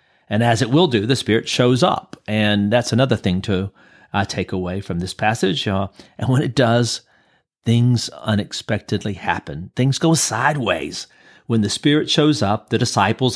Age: 40-59